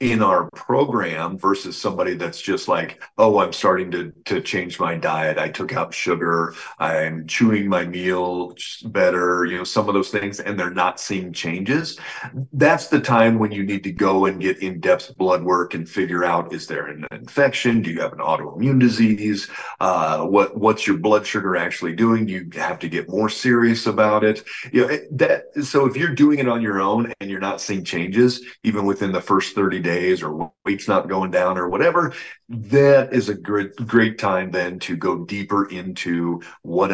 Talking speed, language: 200 wpm, English